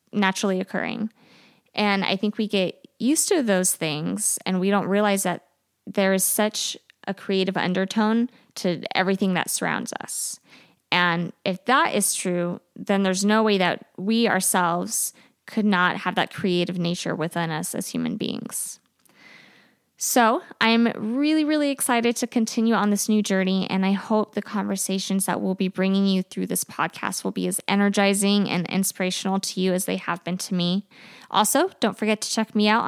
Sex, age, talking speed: female, 20-39, 175 wpm